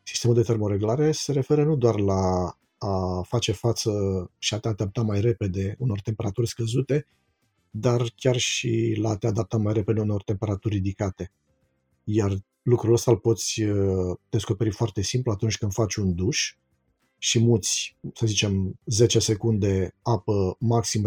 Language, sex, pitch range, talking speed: Romanian, male, 105-130 Hz, 150 wpm